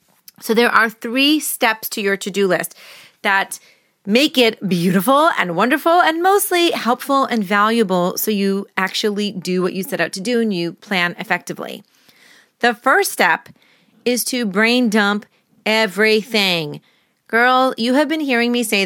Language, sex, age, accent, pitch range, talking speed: English, female, 30-49, American, 195-250 Hz, 155 wpm